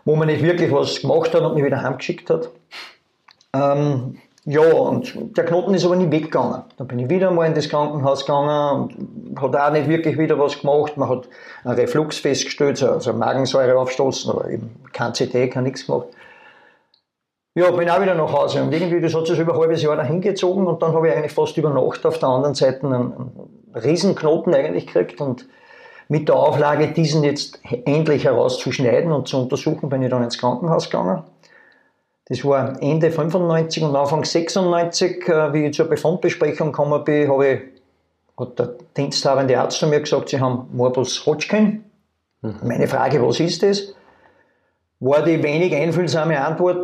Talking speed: 180 wpm